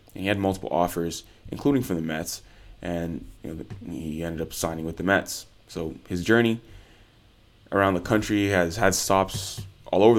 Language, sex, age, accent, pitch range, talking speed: English, male, 20-39, American, 90-110 Hz, 165 wpm